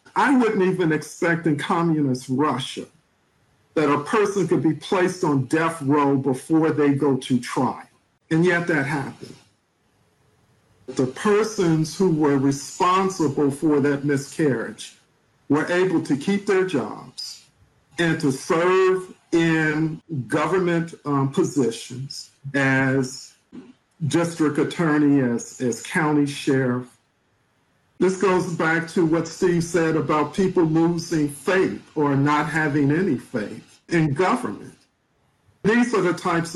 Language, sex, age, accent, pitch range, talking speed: English, male, 50-69, American, 140-170 Hz, 125 wpm